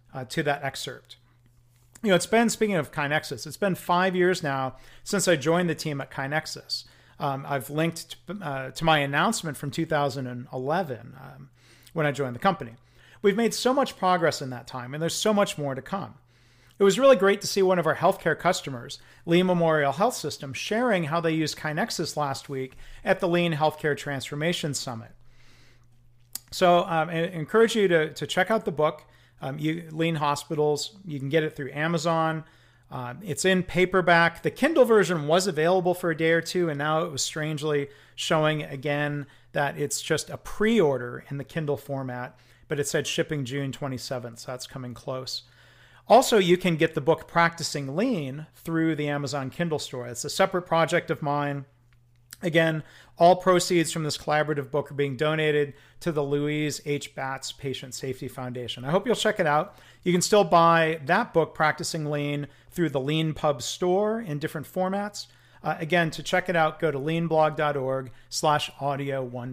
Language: English